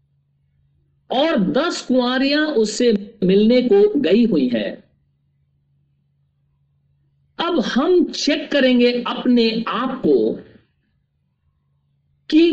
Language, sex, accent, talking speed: Hindi, male, native, 80 wpm